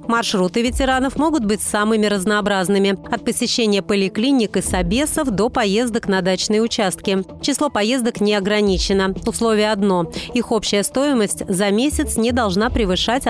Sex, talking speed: female, 135 wpm